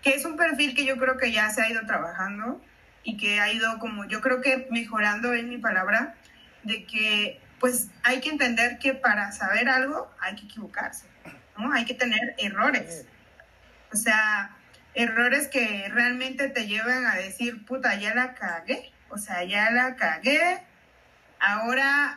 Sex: female